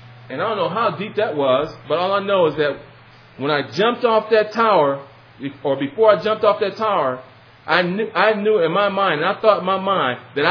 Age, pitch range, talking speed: 30-49, 130-220 Hz, 235 wpm